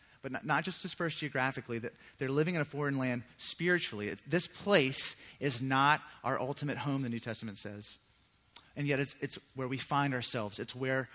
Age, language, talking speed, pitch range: 30-49, English, 190 wpm, 110-145 Hz